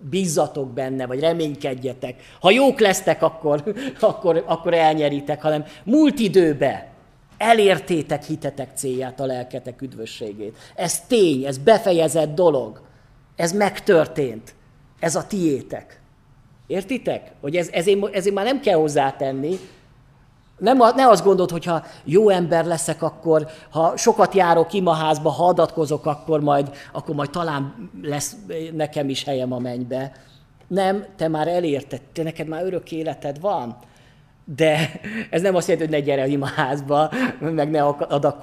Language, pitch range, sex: Hungarian, 140-175 Hz, male